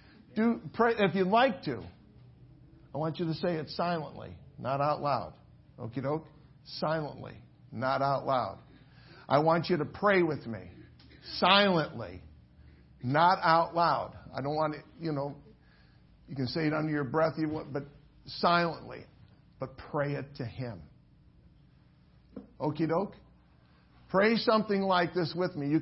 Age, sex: 50-69, male